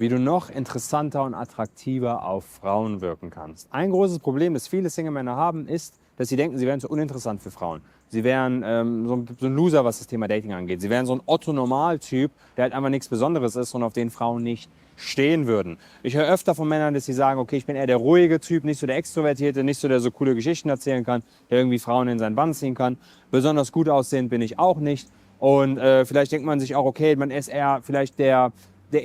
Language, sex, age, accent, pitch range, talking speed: German, male, 30-49, German, 125-150 Hz, 235 wpm